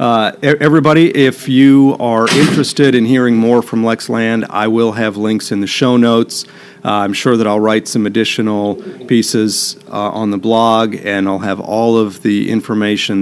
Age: 40-59